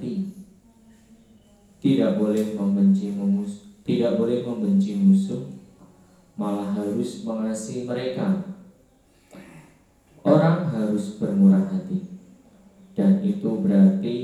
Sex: male